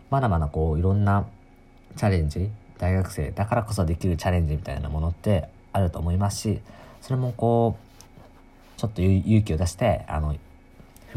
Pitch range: 80-105 Hz